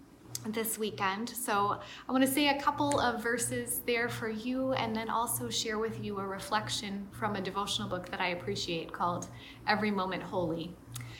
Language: English